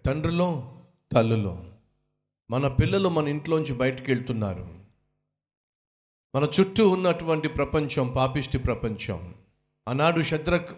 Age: 50-69